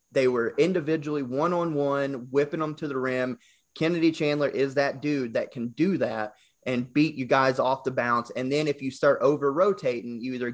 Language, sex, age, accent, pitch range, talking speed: English, male, 30-49, American, 125-155 Hz, 190 wpm